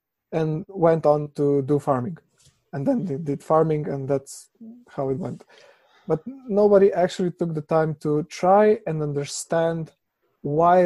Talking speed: 150 wpm